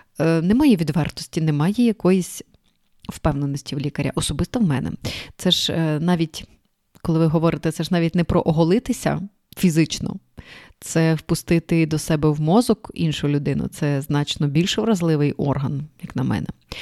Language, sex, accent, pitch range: Ukrainian, female, native, 150-195 Hz